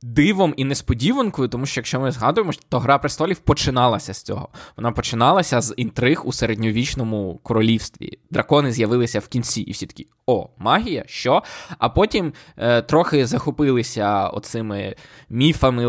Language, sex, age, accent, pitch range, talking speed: Ukrainian, male, 20-39, native, 110-140 Hz, 145 wpm